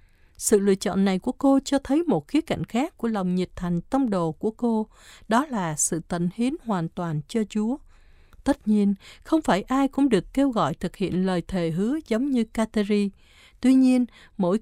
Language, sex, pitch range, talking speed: Vietnamese, female, 180-245 Hz, 200 wpm